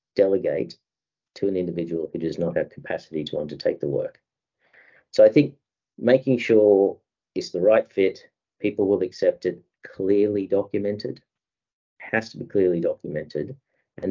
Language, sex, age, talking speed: English, male, 50-69, 145 wpm